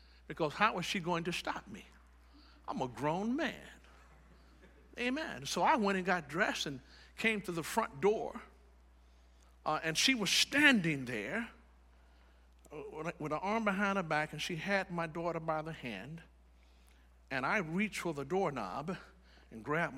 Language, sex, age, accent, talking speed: English, male, 50-69, American, 160 wpm